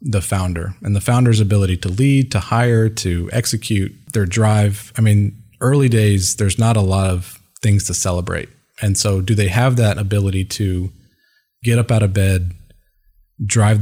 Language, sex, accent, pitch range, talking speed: English, male, American, 95-115 Hz, 175 wpm